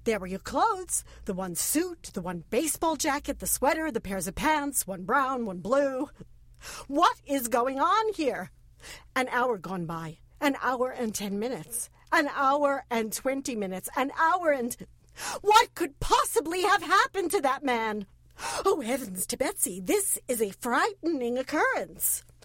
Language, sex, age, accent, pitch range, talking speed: English, female, 50-69, American, 235-345 Hz, 160 wpm